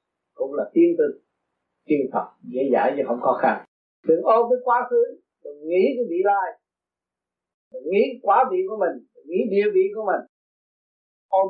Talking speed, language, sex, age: 185 wpm, Vietnamese, male, 50-69